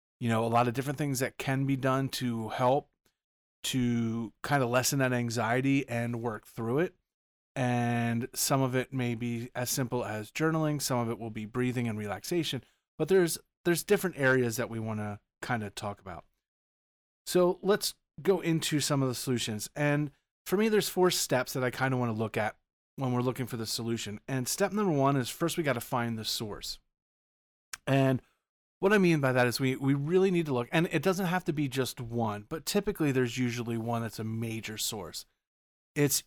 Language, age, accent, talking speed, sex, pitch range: English, 30-49, American, 205 wpm, male, 115-150 Hz